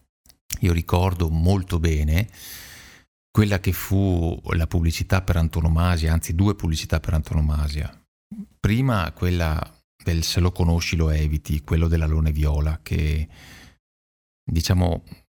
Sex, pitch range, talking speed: male, 80-95 Hz, 115 wpm